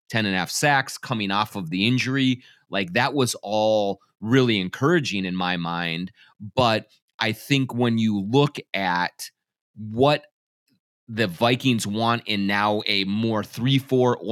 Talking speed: 145 wpm